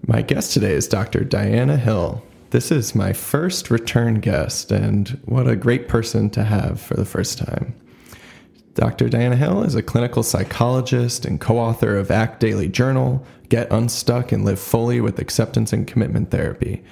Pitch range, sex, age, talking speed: 105-120 Hz, male, 20-39, 165 wpm